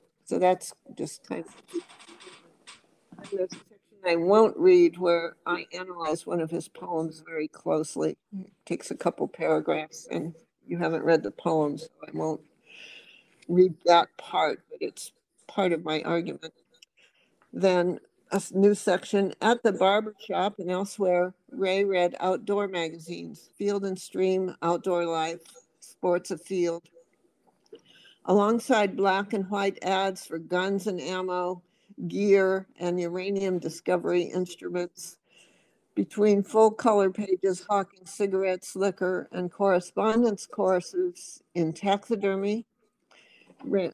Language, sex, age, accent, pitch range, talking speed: English, female, 60-79, American, 175-205 Hz, 120 wpm